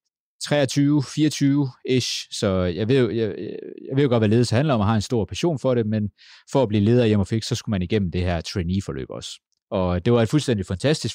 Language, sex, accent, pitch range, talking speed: Danish, male, native, 90-115 Hz, 230 wpm